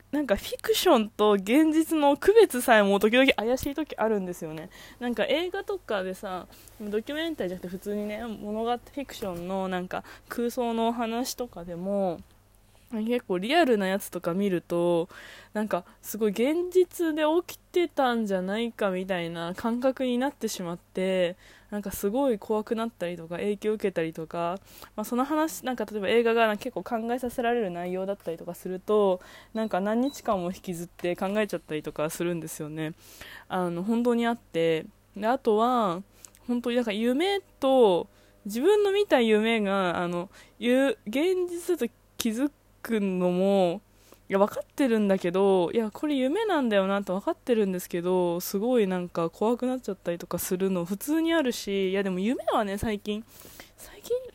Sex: female